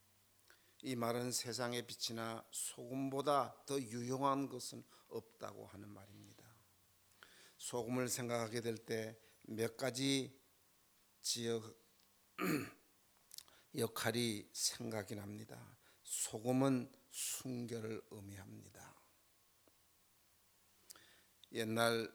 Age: 50-69